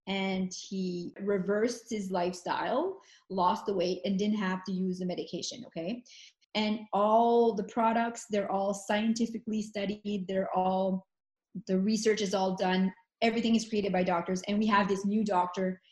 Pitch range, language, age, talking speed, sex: 195-225 Hz, English, 30-49, 160 wpm, female